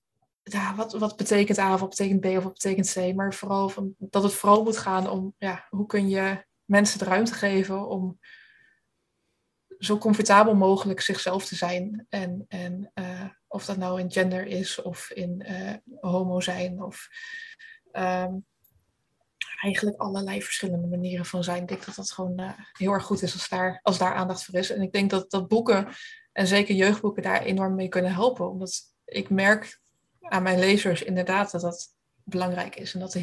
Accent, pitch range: Dutch, 185-210 Hz